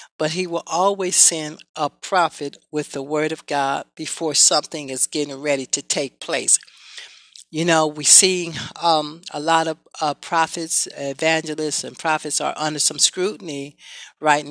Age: 60-79